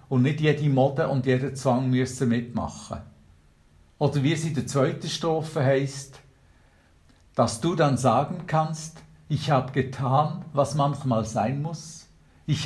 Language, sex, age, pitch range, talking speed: German, male, 50-69, 115-150 Hz, 140 wpm